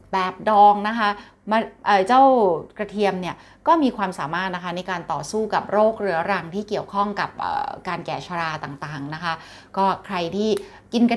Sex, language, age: female, Thai, 20-39